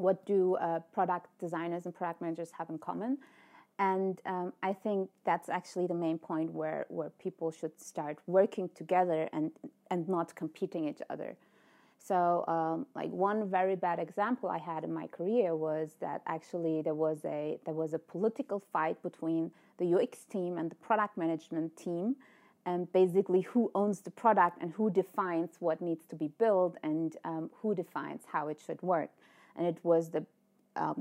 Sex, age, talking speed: female, 30-49, 180 wpm